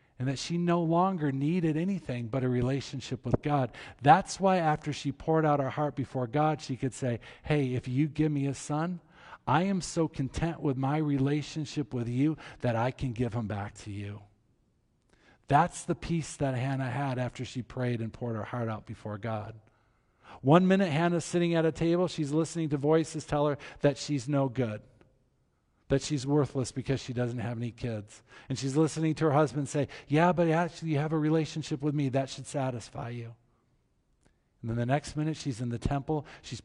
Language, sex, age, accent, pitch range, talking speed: English, male, 50-69, American, 120-150 Hz, 200 wpm